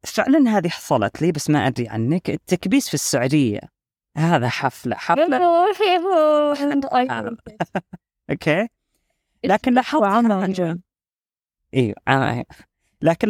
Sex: female